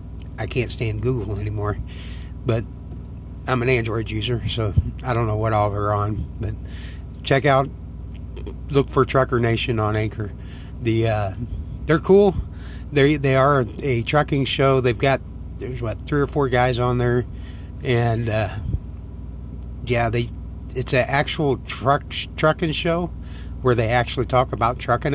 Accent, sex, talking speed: American, male, 150 wpm